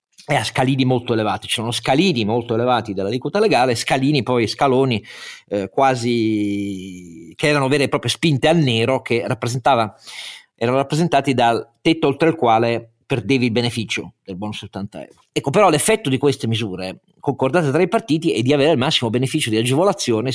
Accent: native